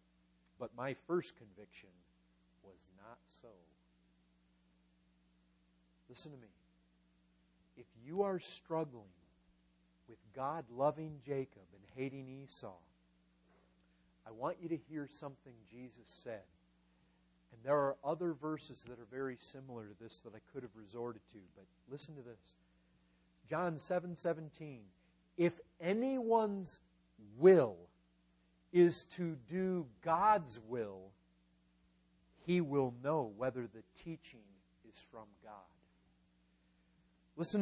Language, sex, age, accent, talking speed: English, male, 40-59, American, 110 wpm